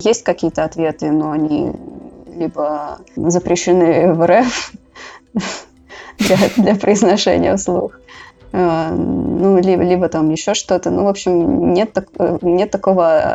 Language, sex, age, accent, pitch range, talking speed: Russian, female, 20-39, native, 170-200 Hz, 110 wpm